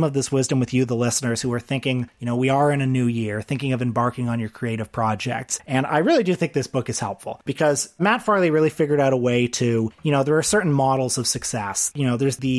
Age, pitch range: 30-49, 120-150 Hz